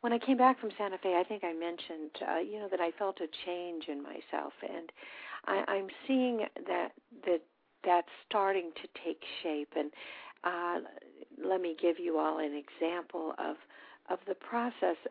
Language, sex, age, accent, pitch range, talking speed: English, female, 50-69, American, 175-225 Hz, 180 wpm